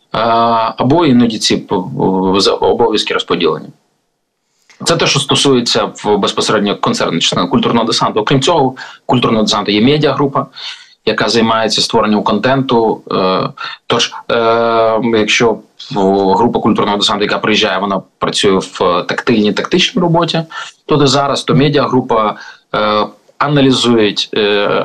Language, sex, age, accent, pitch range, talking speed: Ukrainian, male, 20-39, native, 105-135 Hz, 105 wpm